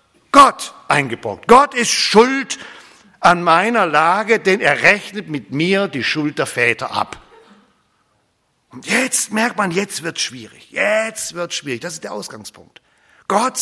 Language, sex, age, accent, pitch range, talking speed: German, male, 50-69, German, 165-225 Hz, 145 wpm